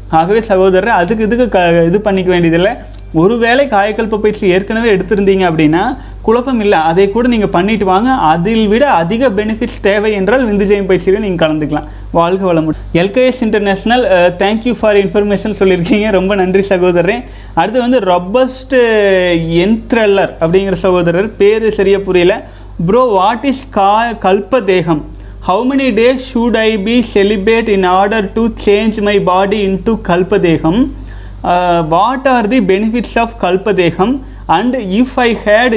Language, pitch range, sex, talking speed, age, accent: Tamil, 185-230 Hz, male, 140 wpm, 30-49, native